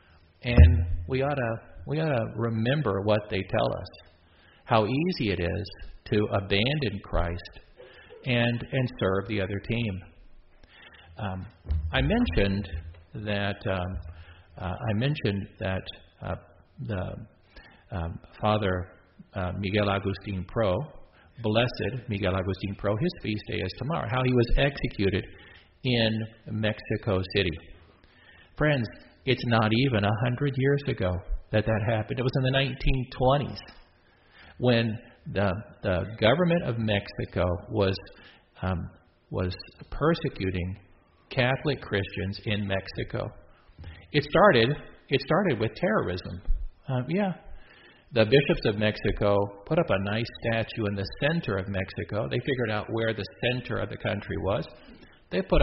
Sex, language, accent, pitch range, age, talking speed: male, English, American, 90-120 Hz, 50-69, 130 wpm